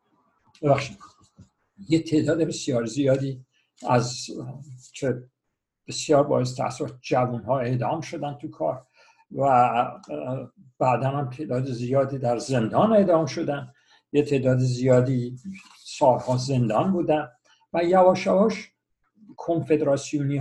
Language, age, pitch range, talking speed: Persian, 60-79, 130-185 Hz, 105 wpm